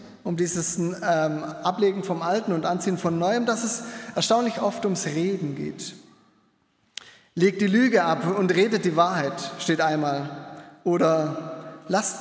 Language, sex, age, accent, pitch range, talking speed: German, male, 20-39, German, 165-230 Hz, 145 wpm